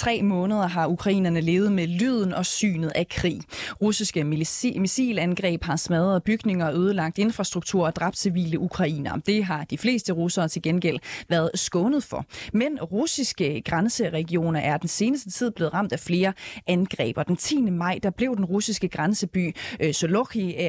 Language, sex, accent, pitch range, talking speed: Danish, female, native, 165-210 Hz, 155 wpm